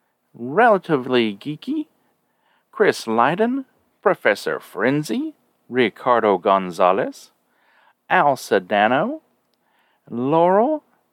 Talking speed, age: 60 wpm, 40-59